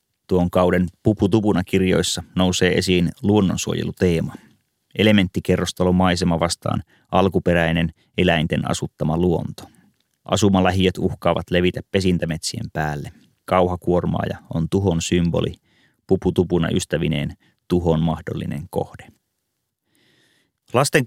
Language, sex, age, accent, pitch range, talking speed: Finnish, male, 30-49, native, 90-100 Hz, 85 wpm